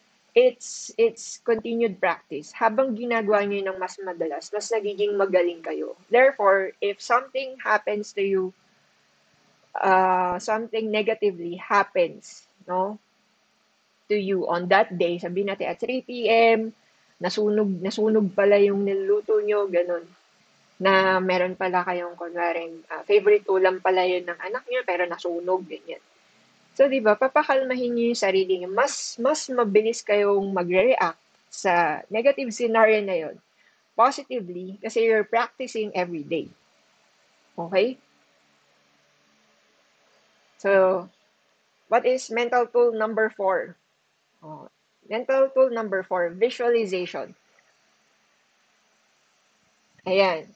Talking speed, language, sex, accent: 110 wpm, English, female, Filipino